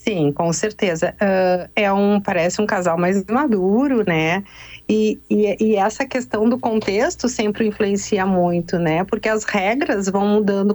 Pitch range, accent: 200-250 Hz, Brazilian